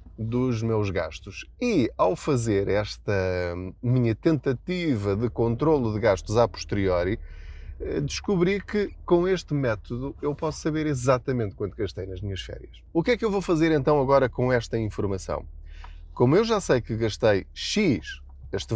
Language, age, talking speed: Portuguese, 20-39, 155 wpm